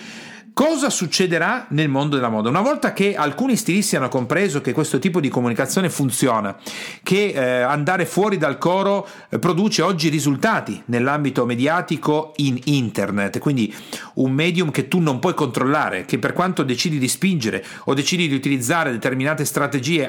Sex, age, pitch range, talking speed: male, 40-59, 130-190 Hz, 150 wpm